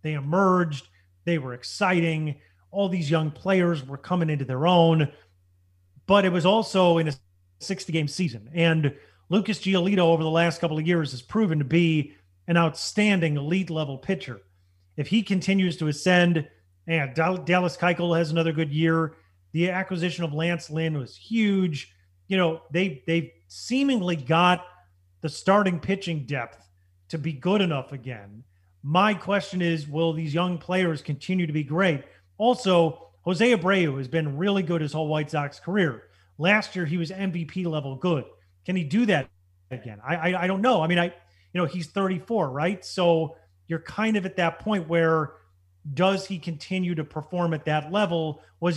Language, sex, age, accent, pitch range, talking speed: English, male, 30-49, American, 140-180 Hz, 165 wpm